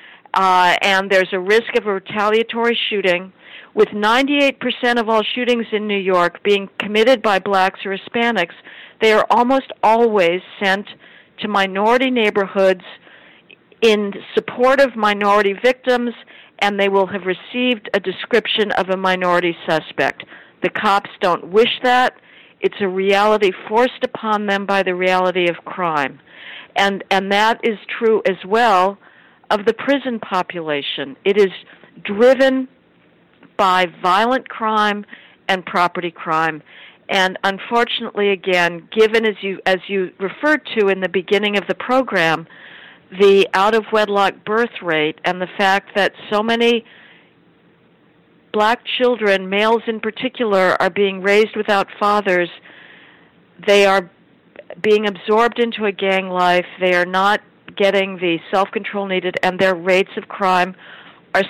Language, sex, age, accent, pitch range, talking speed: English, female, 50-69, American, 185-225 Hz, 135 wpm